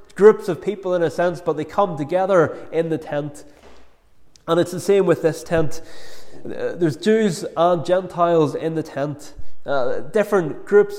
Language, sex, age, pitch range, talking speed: English, male, 20-39, 155-185 Hz, 165 wpm